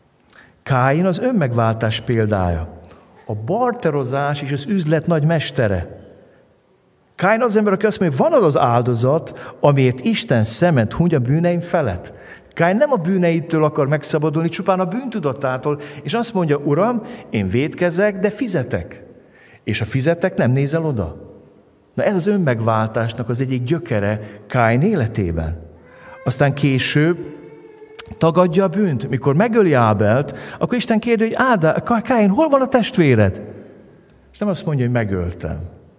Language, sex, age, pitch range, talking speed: Hungarian, male, 50-69, 105-165 Hz, 140 wpm